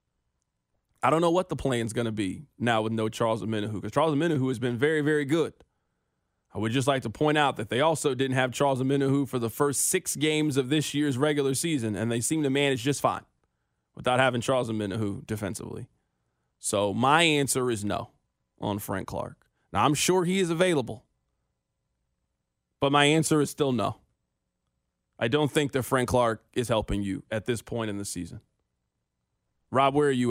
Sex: male